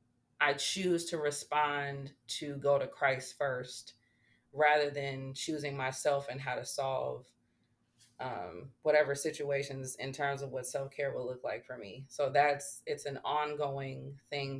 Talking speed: 150 wpm